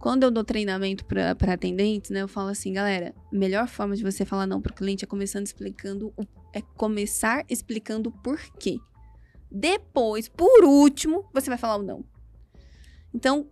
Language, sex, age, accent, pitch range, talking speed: Portuguese, female, 20-39, Brazilian, 200-275 Hz, 155 wpm